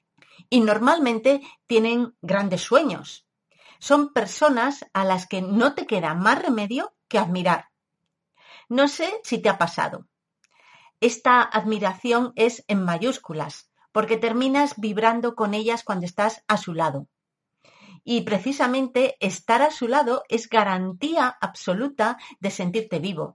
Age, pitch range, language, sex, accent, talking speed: 40-59, 190-250 Hz, Spanish, female, Spanish, 130 wpm